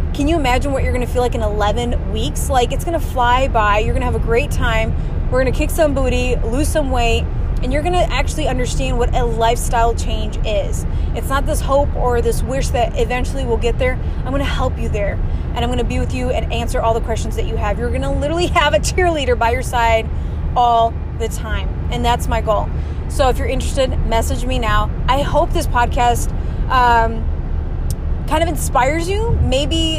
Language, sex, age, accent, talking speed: English, female, 20-39, American, 225 wpm